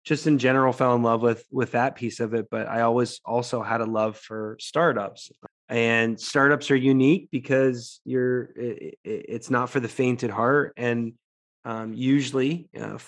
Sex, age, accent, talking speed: male, 20-39, American, 180 wpm